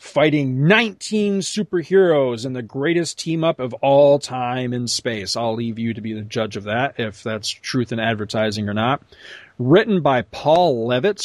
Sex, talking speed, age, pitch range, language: male, 170 wpm, 40-59, 115-155 Hz, English